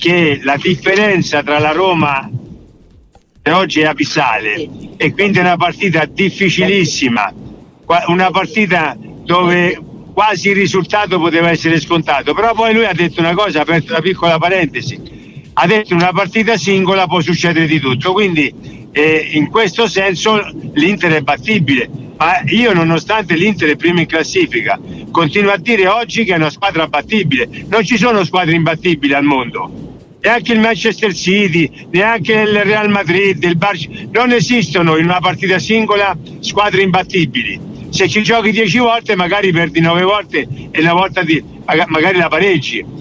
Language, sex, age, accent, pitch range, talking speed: Italian, male, 60-79, native, 165-205 Hz, 155 wpm